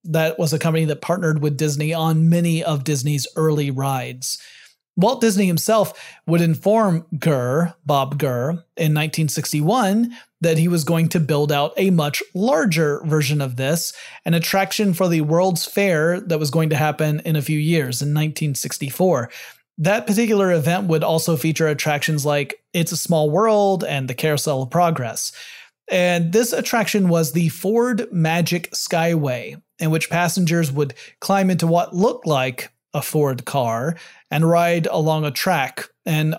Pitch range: 150-175 Hz